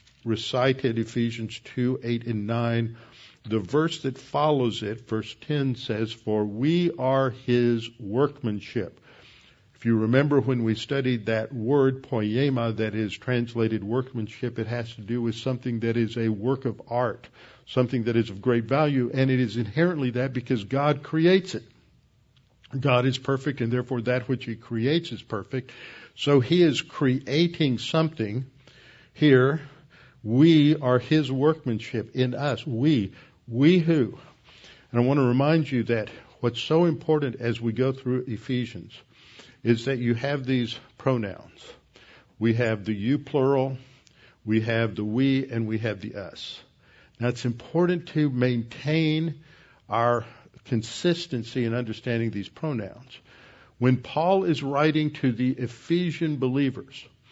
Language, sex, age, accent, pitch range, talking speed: English, male, 60-79, American, 115-140 Hz, 145 wpm